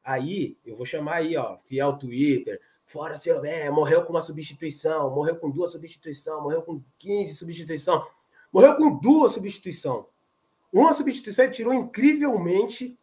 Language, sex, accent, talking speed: Portuguese, male, Brazilian, 145 wpm